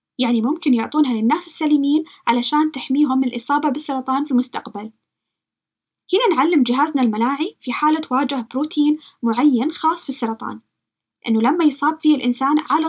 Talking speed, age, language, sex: 140 wpm, 20-39, Arabic, female